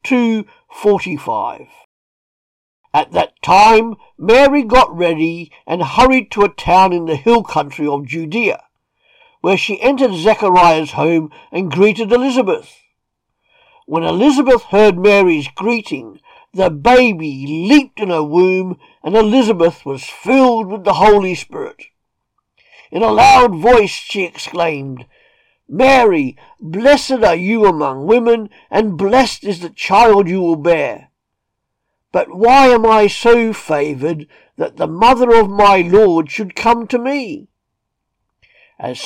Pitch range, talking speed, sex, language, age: 170-240 Hz, 125 wpm, male, English, 50-69